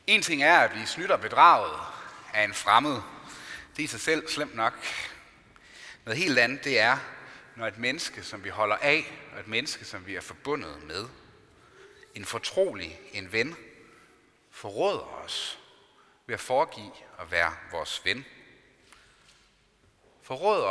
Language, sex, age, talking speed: Danish, male, 30-49, 145 wpm